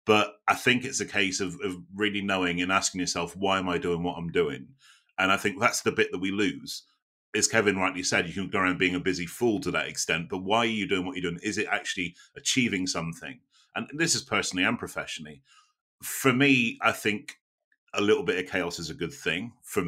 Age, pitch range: 30-49, 90-100 Hz